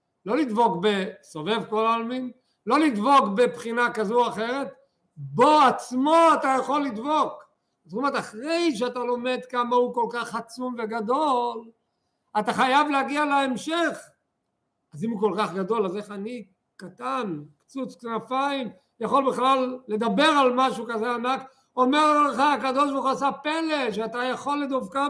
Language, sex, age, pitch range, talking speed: Hebrew, male, 50-69, 190-255 Hz, 145 wpm